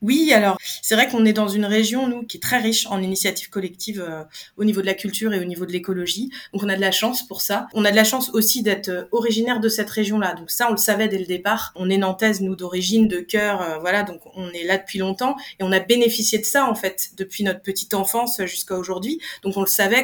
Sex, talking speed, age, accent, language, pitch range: female, 265 wpm, 20-39, French, French, 190-225 Hz